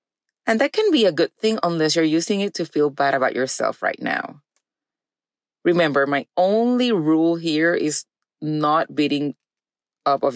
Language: English